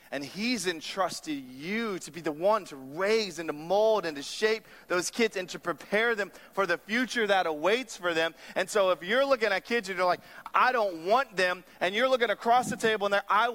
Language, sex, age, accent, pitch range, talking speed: English, male, 30-49, American, 160-230 Hz, 225 wpm